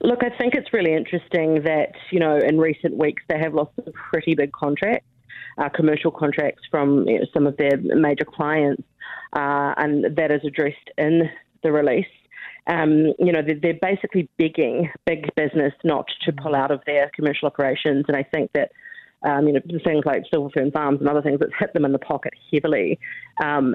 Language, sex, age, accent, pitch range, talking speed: English, female, 30-49, Australian, 145-165 Hz, 195 wpm